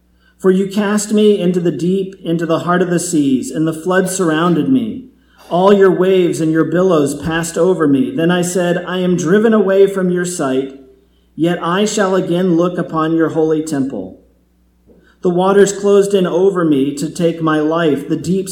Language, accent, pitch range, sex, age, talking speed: English, American, 150-185 Hz, male, 40-59, 190 wpm